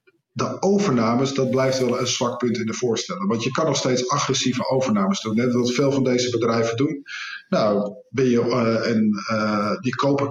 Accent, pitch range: Dutch, 115-140 Hz